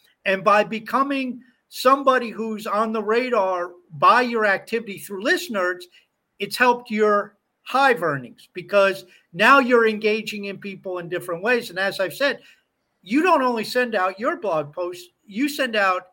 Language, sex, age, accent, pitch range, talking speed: English, male, 50-69, American, 175-230 Hz, 155 wpm